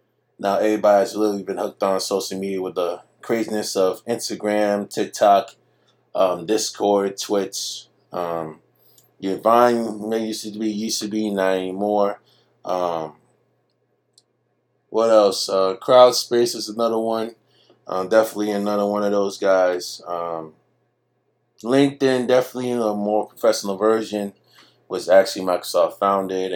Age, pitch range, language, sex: 20-39, 95-115 Hz, English, male